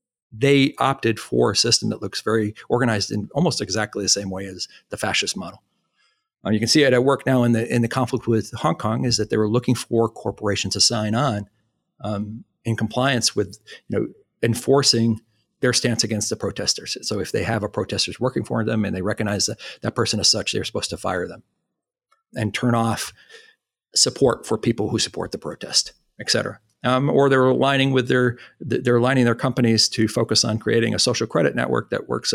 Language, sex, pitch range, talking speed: English, male, 110-130 Hz, 205 wpm